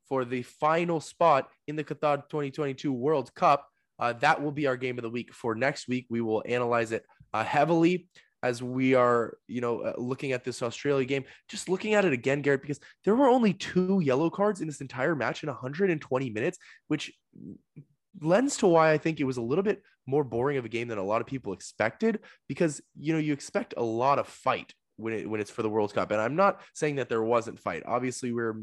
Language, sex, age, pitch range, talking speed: English, male, 20-39, 115-155 Hz, 225 wpm